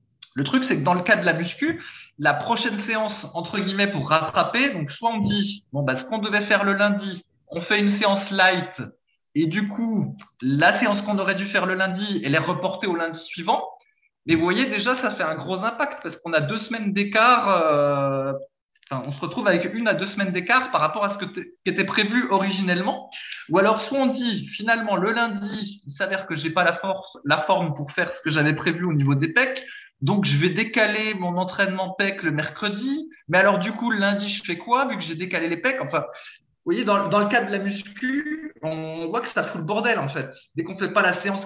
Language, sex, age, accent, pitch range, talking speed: French, male, 20-39, French, 165-215 Hz, 235 wpm